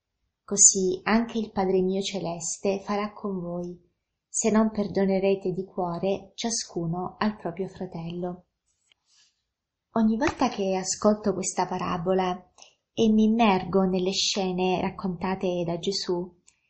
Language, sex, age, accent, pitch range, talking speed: Italian, female, 20-39, native, 185-220 Hz, 115 wpm